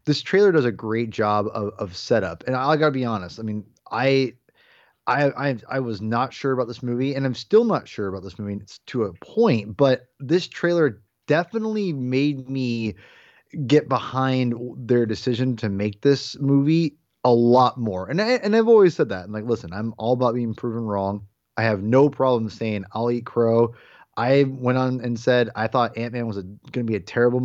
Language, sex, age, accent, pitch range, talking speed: English, male, 20-39, American, 110-135 Hz, 210 wpm